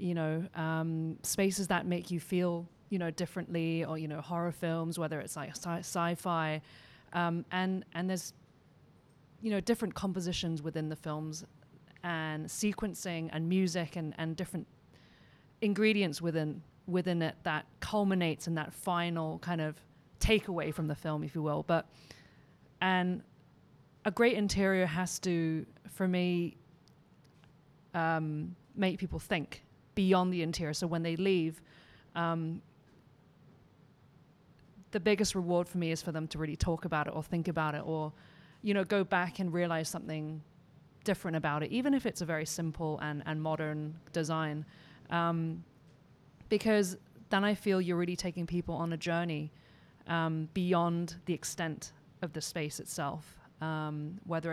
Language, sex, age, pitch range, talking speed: English, female, 30-49, 155-180 Hz, 155 wpm